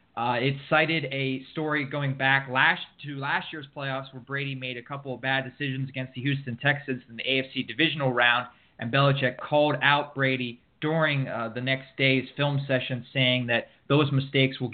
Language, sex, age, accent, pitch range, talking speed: English, male, 20-39, American, 130-150 Hz, 185 wpm